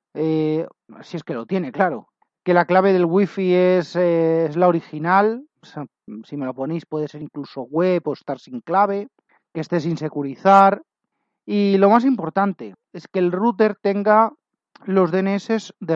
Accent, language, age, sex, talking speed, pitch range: Spanish, Spanish, 30-49, male, 175 wpm, 150-205 Hz